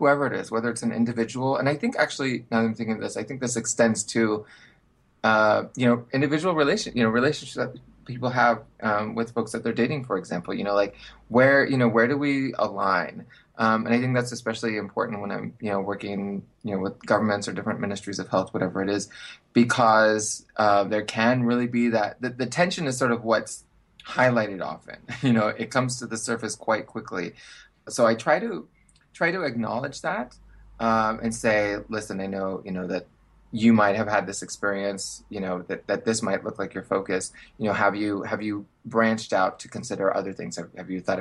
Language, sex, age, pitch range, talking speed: English, male, 20-39, 100-120 Hz, 215 wpm